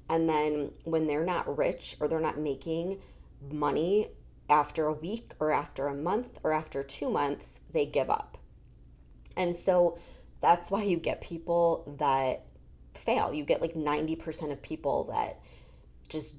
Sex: female